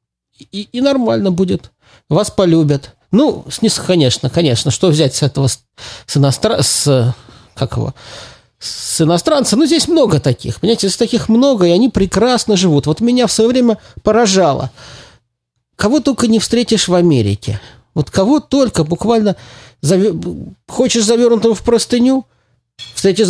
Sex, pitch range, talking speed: male, 125-210 Hz, 140 wpm